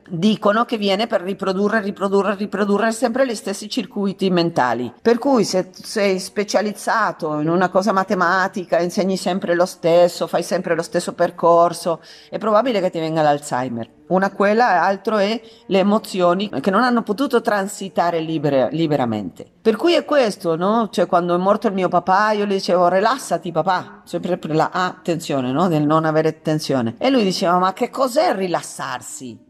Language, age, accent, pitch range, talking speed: Italian, 40-59, native, 175-225 Hz, 165 wpm